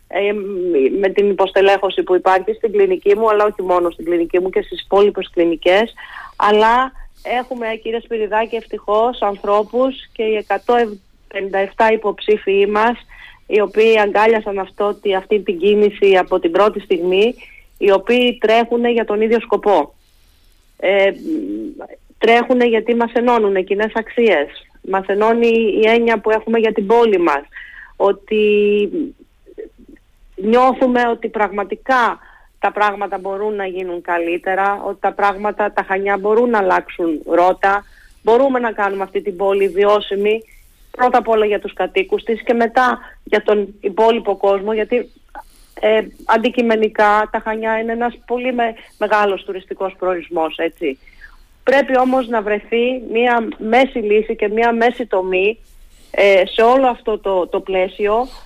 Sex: female